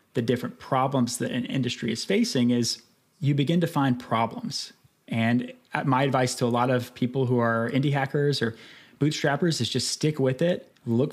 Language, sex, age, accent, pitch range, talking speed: English, male, 30-49, American, 120-145 Hz, 185 wpm